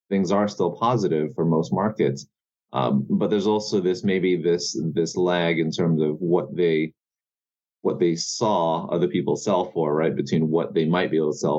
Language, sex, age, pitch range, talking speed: English, male, 30-49, 80-95 Hz, 190 wpm